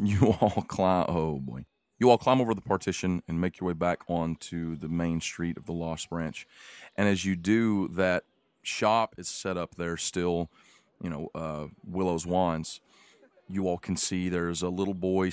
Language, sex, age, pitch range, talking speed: English, male, 40-59, 85-95 Hz, 190 wpm